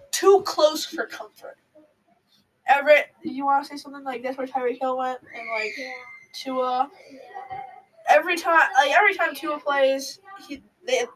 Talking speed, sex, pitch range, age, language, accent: 145 wpm, female, 240-320 Hz, 10-29, English, American